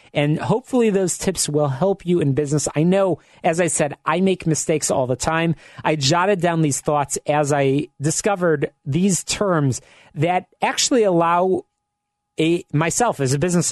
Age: 30-49